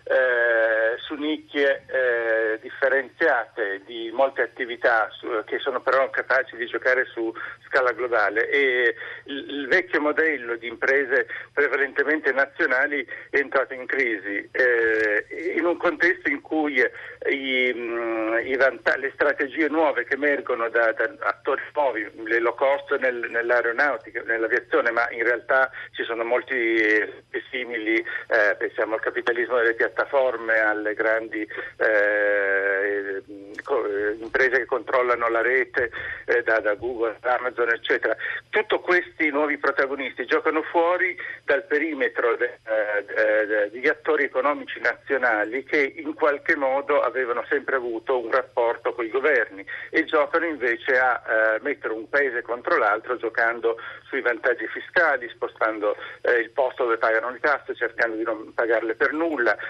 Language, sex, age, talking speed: Italian, male, 50-69, 140 wpm